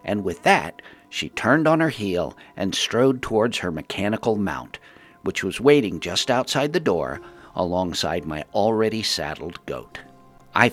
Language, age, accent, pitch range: English, 60-79, American, 90-120 Hz